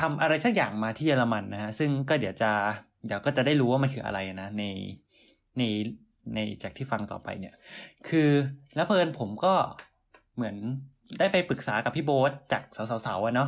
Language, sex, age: Thai, male, 20-39